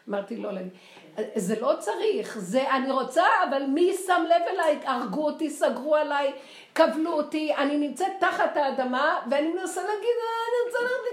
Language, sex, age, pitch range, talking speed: Hebrew, female, 50-69, 220-320 Hz, 160 wpm